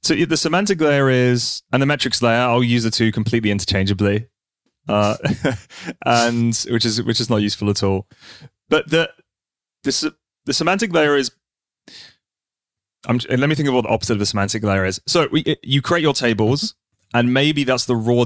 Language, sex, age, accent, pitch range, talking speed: English, male, 30-49, British, 105-130 Hz, 185 wpm